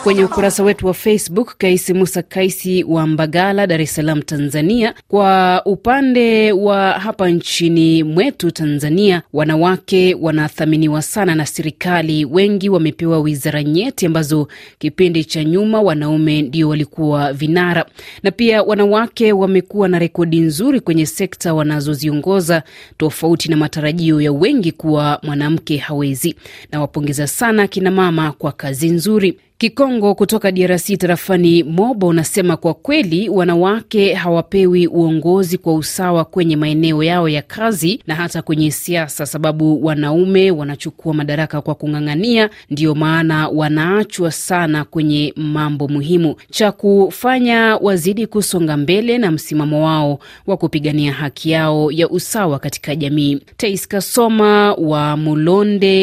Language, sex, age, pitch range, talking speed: Swahili, female, 30-49, 155-195 Hz, 125 wpm